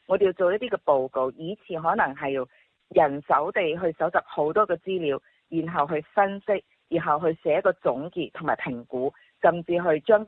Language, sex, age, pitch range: Chinese, female, 30-49, 145-205 Hz